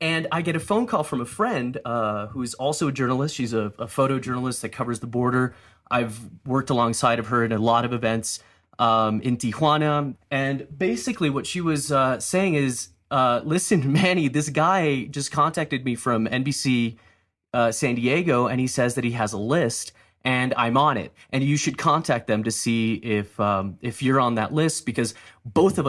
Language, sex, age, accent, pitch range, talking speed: English, male, 30-49, American, 110-135 Hz, 200 wpm